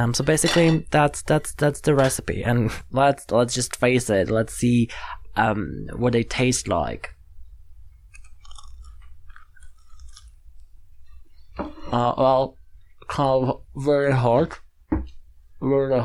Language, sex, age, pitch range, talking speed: English, male, 20-39, 90-130 Hz, 105 wpm